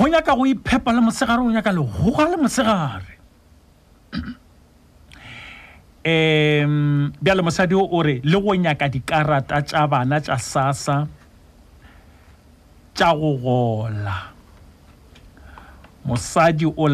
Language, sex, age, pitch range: English, male, 50-69, 95-150 Hz